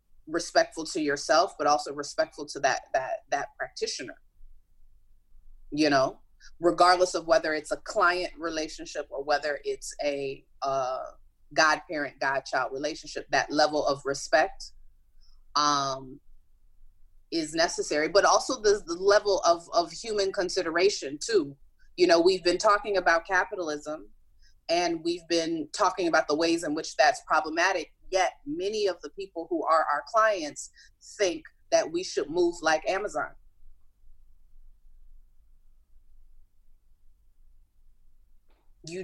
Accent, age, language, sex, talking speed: American, 30-49, English, female, 125 wpm